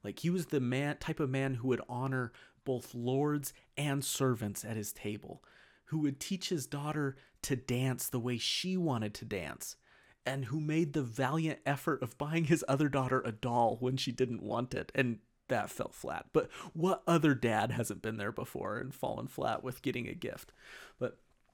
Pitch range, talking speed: 115-140 Hz, 190 wpm